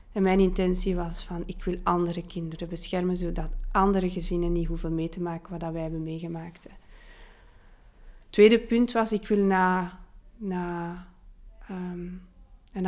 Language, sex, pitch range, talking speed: Dutch, female, 175-200 Hz, 150 wpm